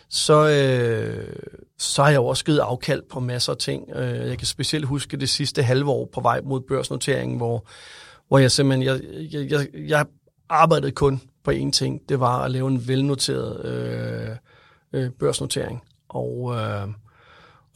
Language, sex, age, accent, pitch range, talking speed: English, male, 30-49, Danish, 125-150 Hz, 155 wpm